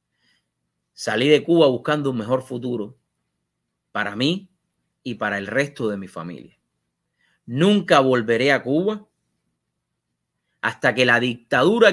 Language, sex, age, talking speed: English, male, 30-49, 120 wpm